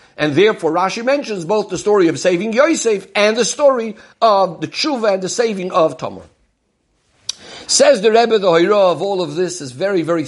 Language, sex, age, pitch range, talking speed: English, male, 50-69, 190-240 Hz, 195 wpm